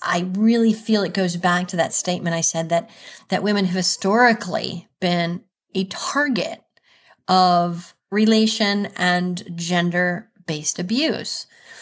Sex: female